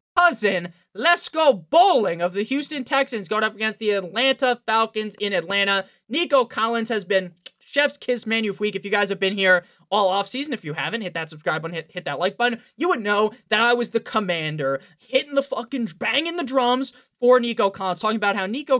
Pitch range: 195-255 Hz